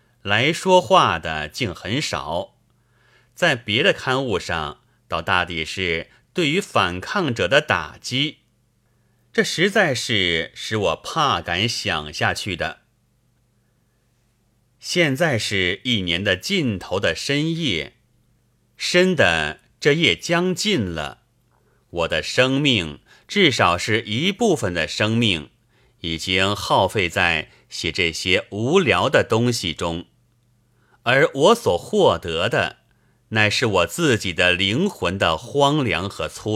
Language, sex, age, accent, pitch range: Chinese, male, 30-49, native, 100-135 Hz